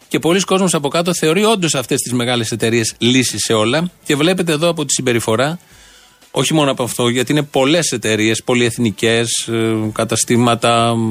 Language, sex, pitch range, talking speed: Greek, male, 125-170 Hz, 165 wpm